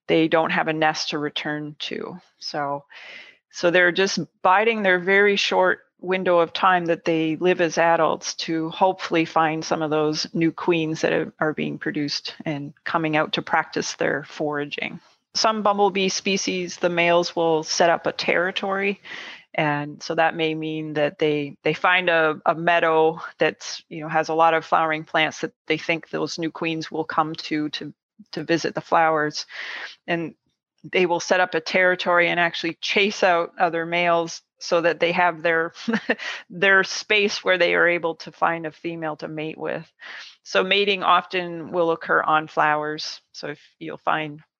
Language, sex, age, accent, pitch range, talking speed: English, female, 30-49, American, 155-180 Hz, 175 wpm